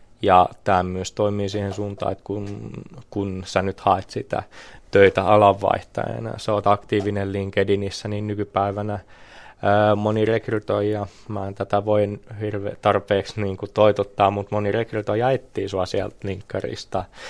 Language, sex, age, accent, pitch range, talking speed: Finnish, male, 20-39, native, 95-105 Hz, 130 wpm